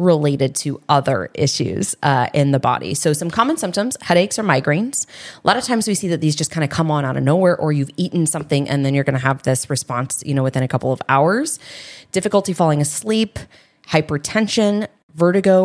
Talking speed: 210 wpm